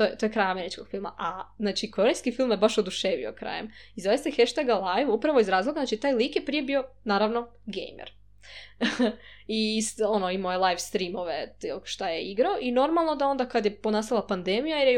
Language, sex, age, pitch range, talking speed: Croatian, female, 20-39, 200-255 Hz, 200 wpm